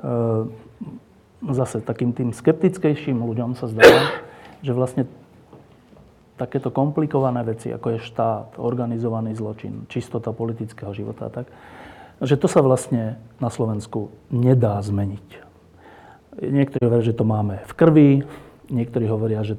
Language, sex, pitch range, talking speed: Slovak, male, 110-135 Hz, 125 wpm